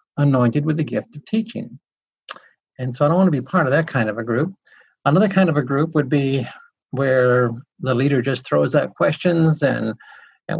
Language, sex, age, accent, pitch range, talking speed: English, male, 50-69, American, 125-170 Hz, 205 wpm